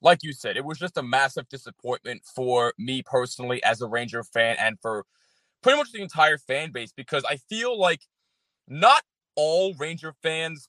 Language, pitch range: English, 130-175 Hz